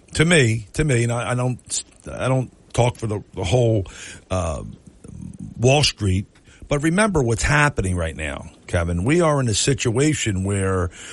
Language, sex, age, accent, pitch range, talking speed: English, male, 50-69, American, 95-130 Hz, 160 wpm